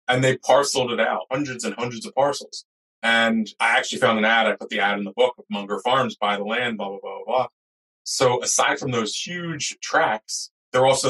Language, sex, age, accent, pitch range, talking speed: English, male, 20-39, American, 105-120 Hz, 230 wpm